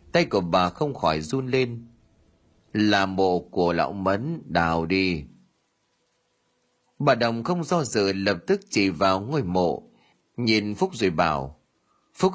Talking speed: 145 wpm